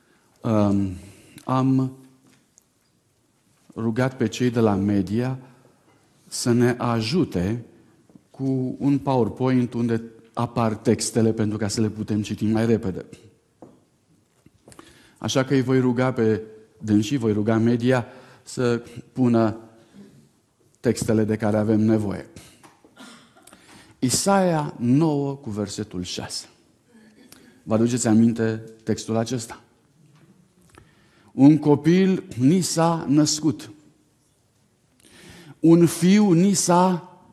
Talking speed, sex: 100 wpm, male